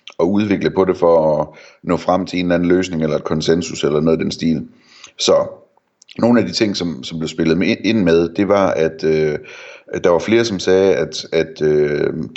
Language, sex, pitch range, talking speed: Danish, male, 80-95 Hz, 220 wpm